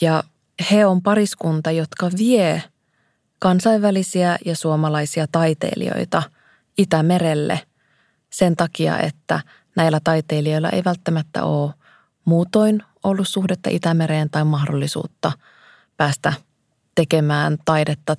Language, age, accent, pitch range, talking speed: Finnish, 20-39, native, 155-185 Hz, 90 wpm